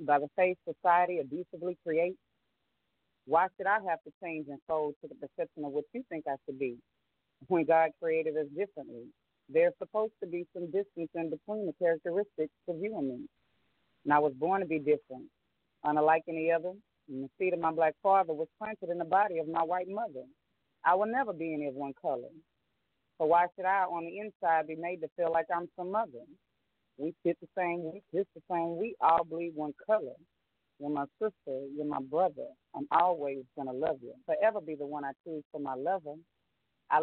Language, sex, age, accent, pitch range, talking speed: English, female, 40-59, American, 150-185 Hz, 205 wpm